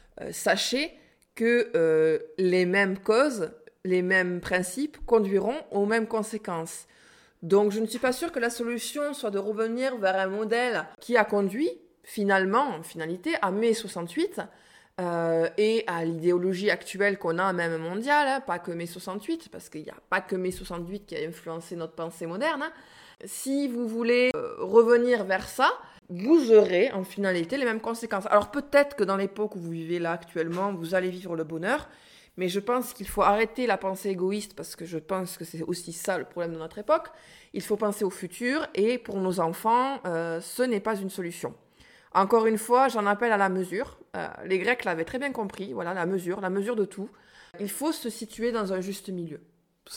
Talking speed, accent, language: 195 wpm, French, French